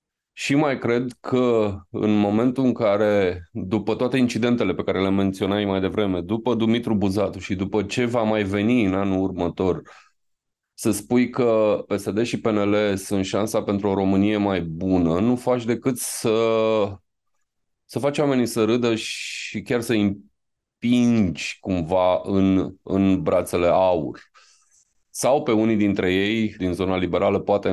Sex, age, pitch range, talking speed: male, 20-39, 95-120 Hz, 150 wpm